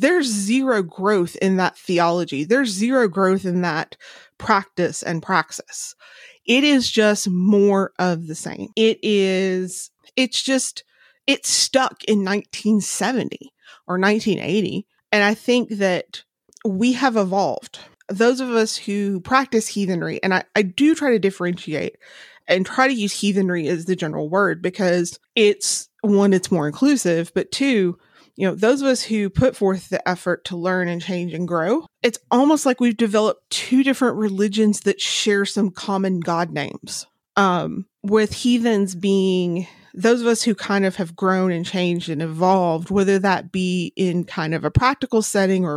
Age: 30-49